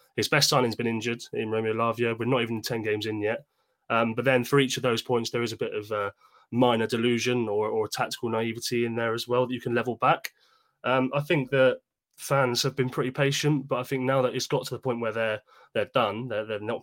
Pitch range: 110-125 Hz